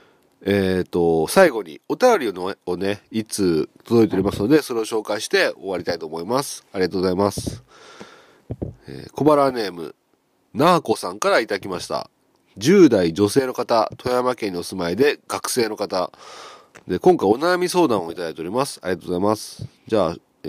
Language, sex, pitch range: Japanese, male, 95-135 Hz